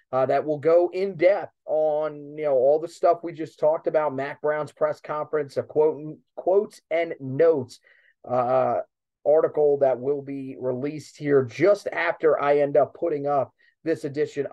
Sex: male